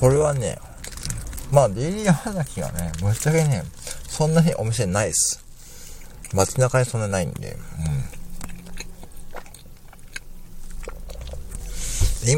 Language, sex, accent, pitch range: Japanese, male, native, 75-110 Hz